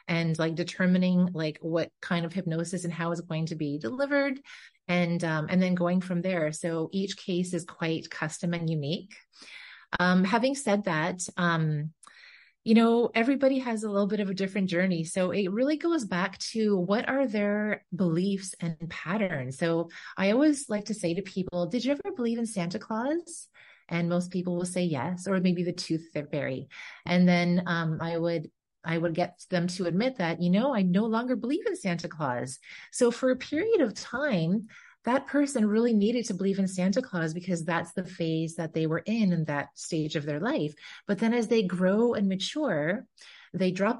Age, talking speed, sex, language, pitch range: 30-49, 195 wpm, female, English, 170-225 Hz